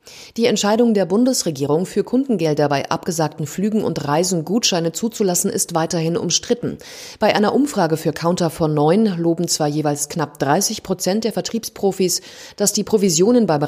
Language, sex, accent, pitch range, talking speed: German, female, German, 160-215 Hz, 150 wpm